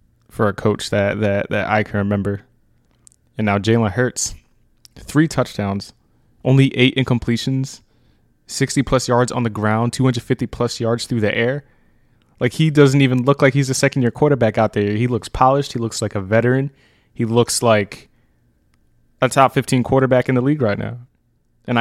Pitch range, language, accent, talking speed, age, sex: 105-125 Hz, English, American, 165 wpm, 20-39, male